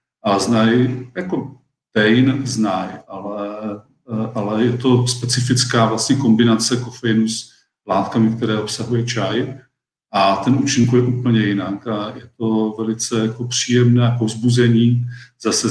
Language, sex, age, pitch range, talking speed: Czech, male, 40-59, 110-125 Hz, 120 wpm